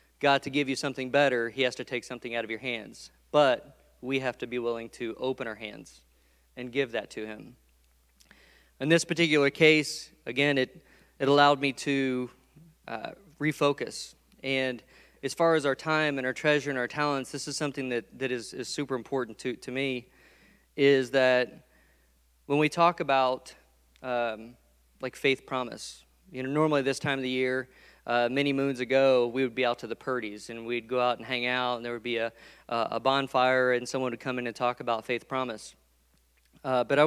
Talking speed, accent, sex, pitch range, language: 200 wpm, American, male, 115-140 Hz, English